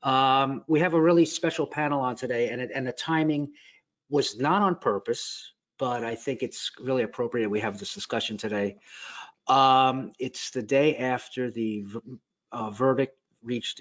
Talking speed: 165 wpm